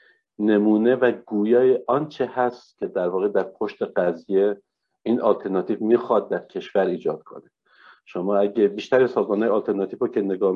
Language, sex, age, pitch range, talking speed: Persian, male, 50-69, 95-125 Hz, 160 wpm